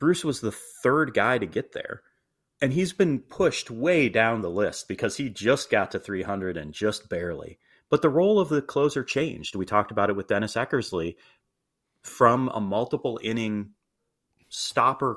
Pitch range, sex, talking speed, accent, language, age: 100-130 Hz, male, 175 wpm, American, English, 30-49